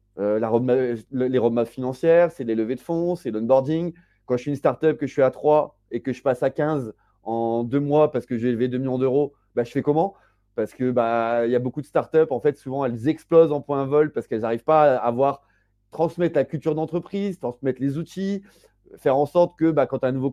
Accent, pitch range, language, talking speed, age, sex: French, 125-150 Hz, French, 235 wpm, 30-49, male